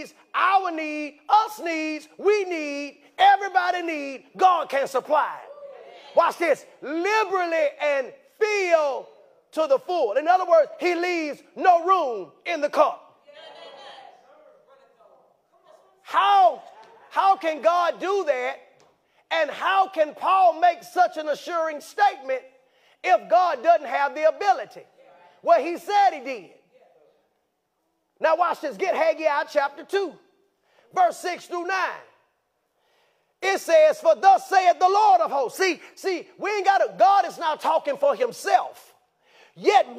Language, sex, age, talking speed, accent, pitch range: English, male, 30-49, 135 wpm, American, 300-380 Hz